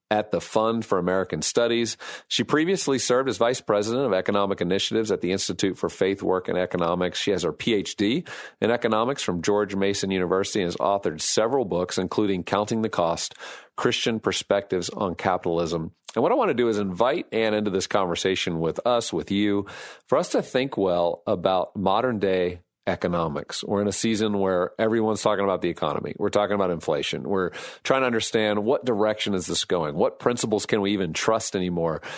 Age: 40-59